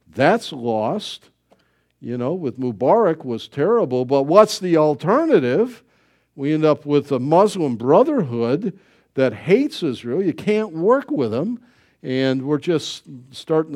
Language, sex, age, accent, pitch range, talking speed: English, male, 50-69, American, 120-175 Hz, 135 wpm